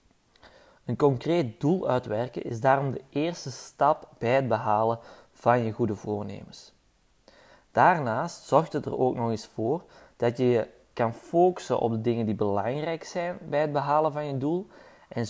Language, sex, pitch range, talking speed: Dutch, male, 115-145 Hz, 165 wpm